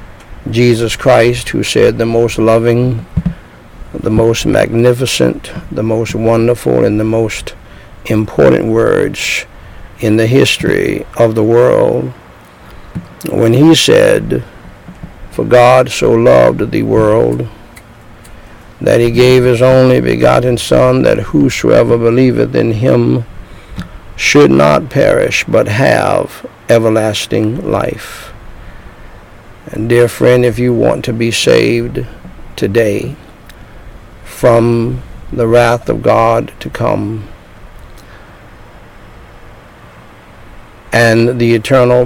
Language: English